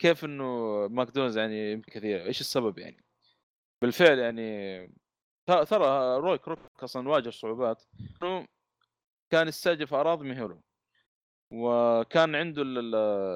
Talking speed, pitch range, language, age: 110 wpm, 115-150 Hz, Arabic, 20-39